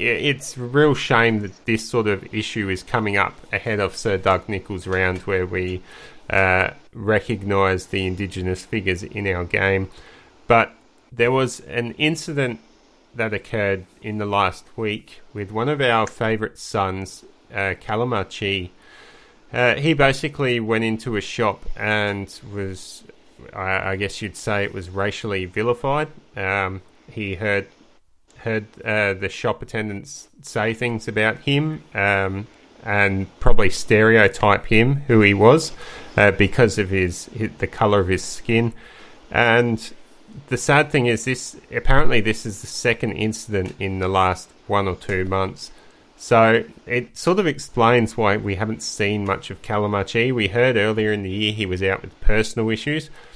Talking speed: 155 wpm